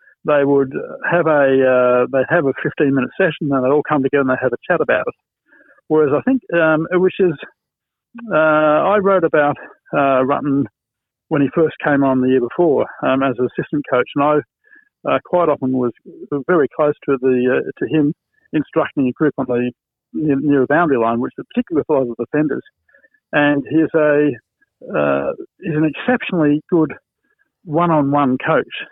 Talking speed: 185 wpm